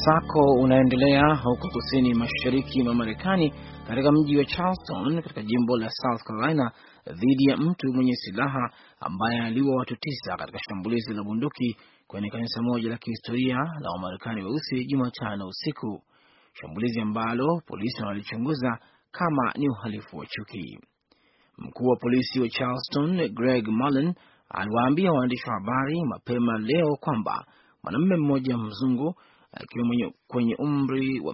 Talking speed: 135 wpm